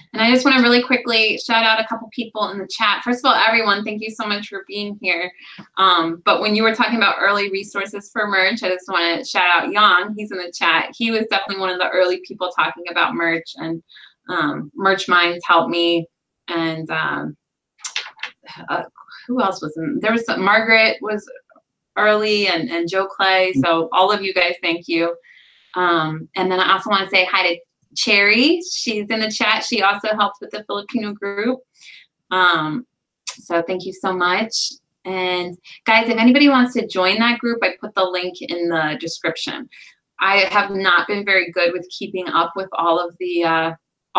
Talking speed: 200 wpm